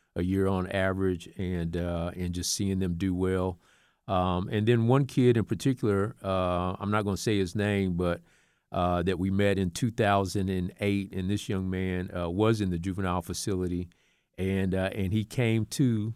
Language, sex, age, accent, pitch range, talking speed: English, male, 50-69, American, 90-110 Hz, 185 wpm